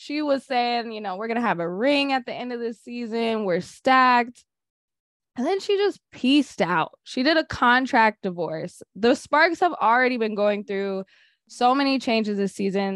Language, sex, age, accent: English, female, 20-39, American